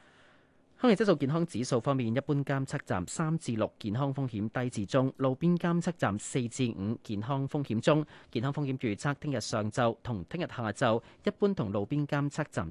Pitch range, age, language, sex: 115-150 Hz, 30-49, Chinese, male